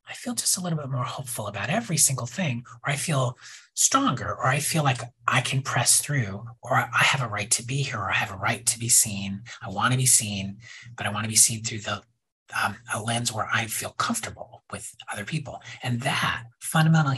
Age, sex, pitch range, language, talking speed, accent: 40-59, male, 115-150 Hz, English, 230 wpm, American